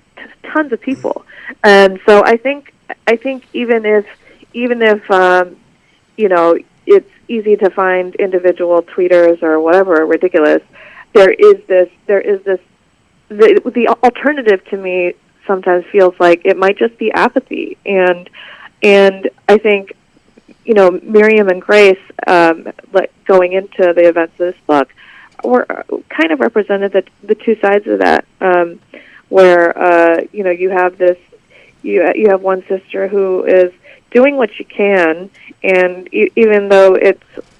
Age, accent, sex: 30-49, American, female